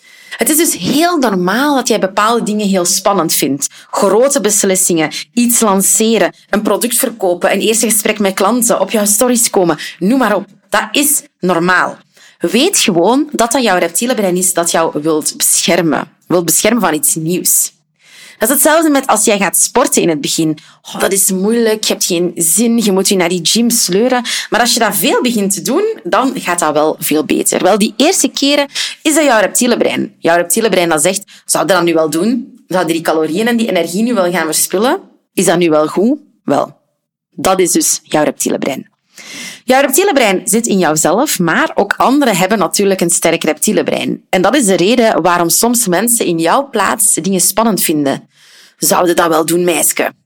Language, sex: Dutch, female